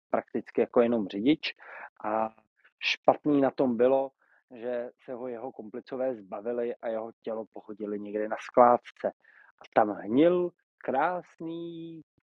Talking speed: 125 wpm